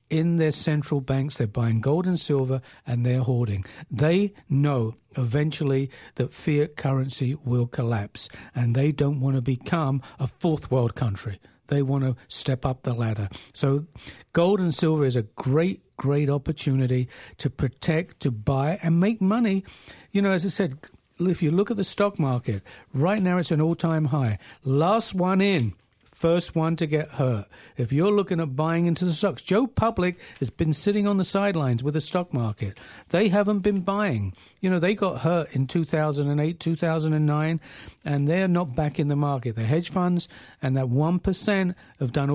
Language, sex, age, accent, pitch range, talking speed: English, male, 60-79, British, 130-170 Hz, 180 wpm